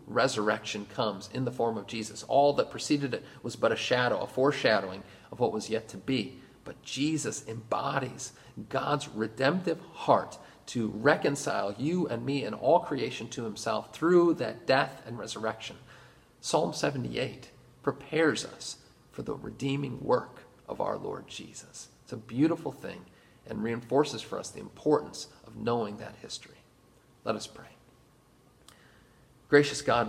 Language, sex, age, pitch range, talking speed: English, male, 40-59, 110-135 Hz, 150 wpm